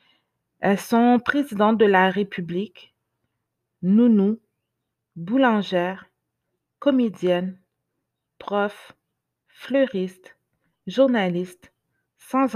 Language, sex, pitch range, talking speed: French, female, 180-235 Hz, 60 wpm